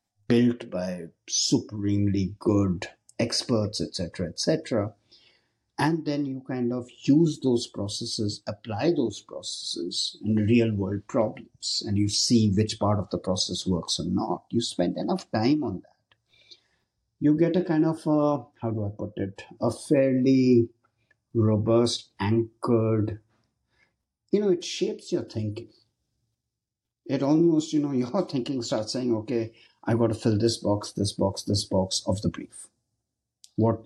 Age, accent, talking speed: 50-69, Indian, 145 wpm